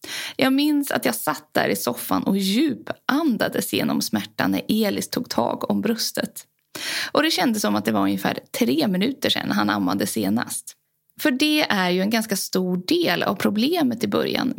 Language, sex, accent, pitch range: English, female, Swedish, 200-275 Hz